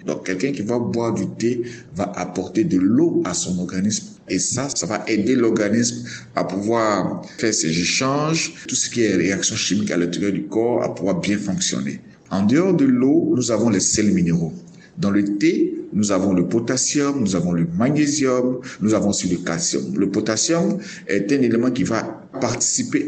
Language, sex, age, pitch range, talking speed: French, male, 50-69, 95-130 Hz, 185 wpm